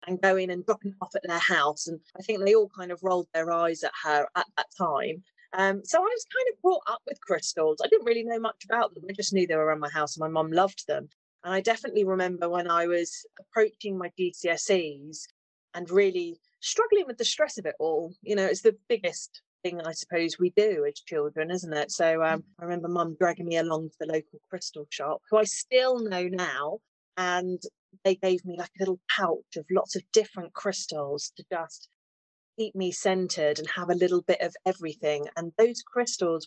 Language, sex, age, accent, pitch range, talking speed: English, female, 30-49, British, 165-210 Hz, 215 wpm